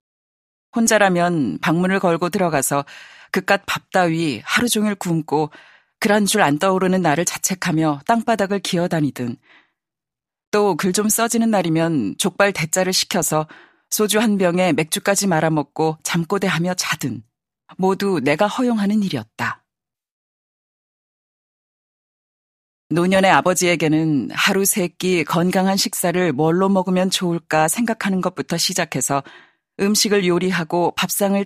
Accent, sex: native, female